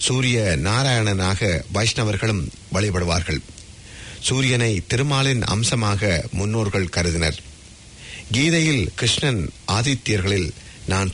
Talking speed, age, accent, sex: 70 wpm, 50-69, Indian, male